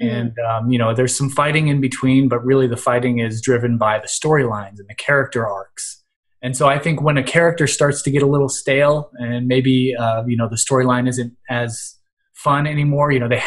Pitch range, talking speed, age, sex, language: 120-145 Hz, 220 wpm, 20-39, male, English